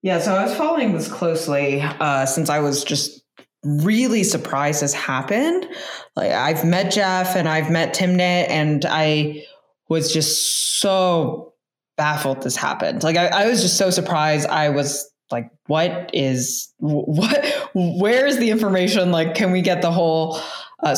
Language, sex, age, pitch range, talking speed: English, female, 20-39, 150-195 Hz, 160 wpm